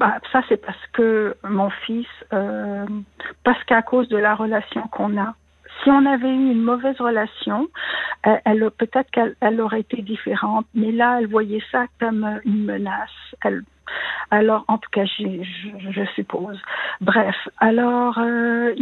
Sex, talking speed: female, 160 wpm